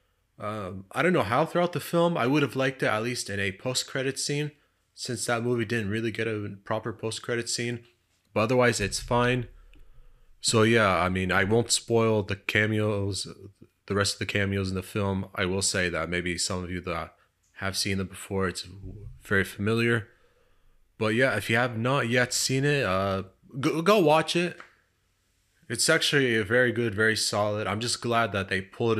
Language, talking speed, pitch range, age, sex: English, 195 wpm, 95-120 Hz, 20-39, male